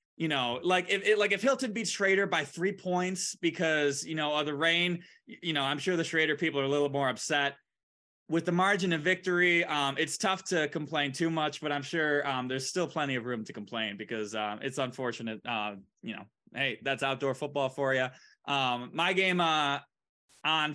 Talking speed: 210 wpm